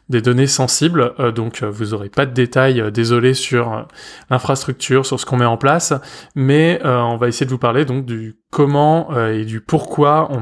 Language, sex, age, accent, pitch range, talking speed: French, male, 20-39, French, 115-140 Hz, 220 wpm